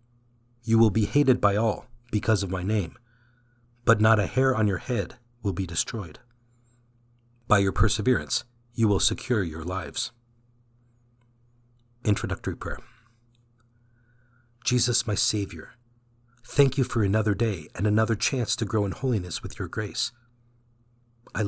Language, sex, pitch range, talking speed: English, male, 110-120 Hz, 135 wpm